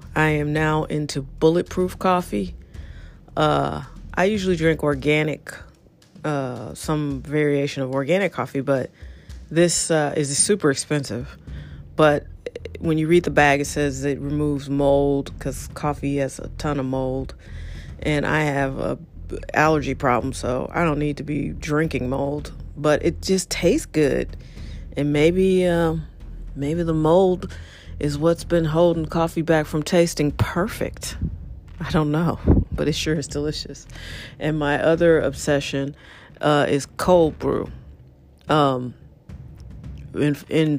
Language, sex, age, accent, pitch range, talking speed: English, female, 40-59, American, 130-155 Hz, 140 wpm